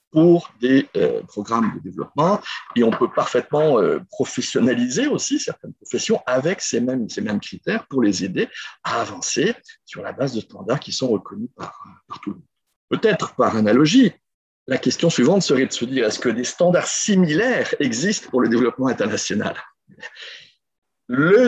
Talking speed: 170 wpm